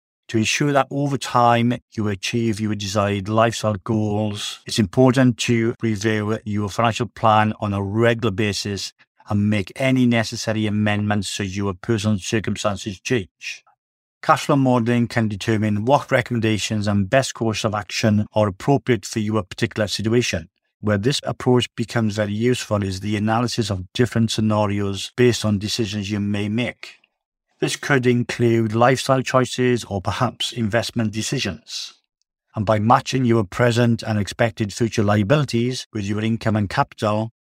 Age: 50-69